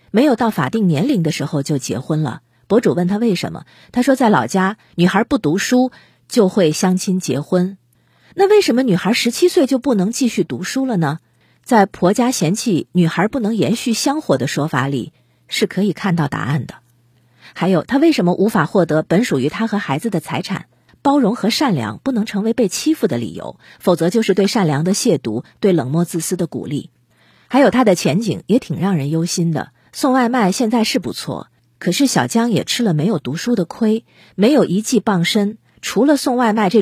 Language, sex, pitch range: Chinese, female, 160-230 Hz